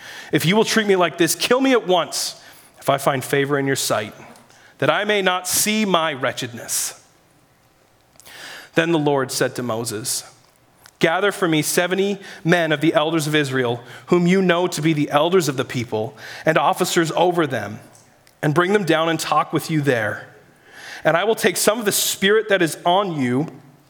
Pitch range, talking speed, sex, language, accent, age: 145-185 Hz, 190 wpm, male, English, American, 30-49